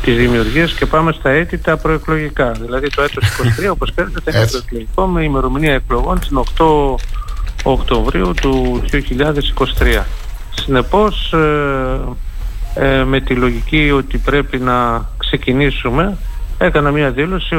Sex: male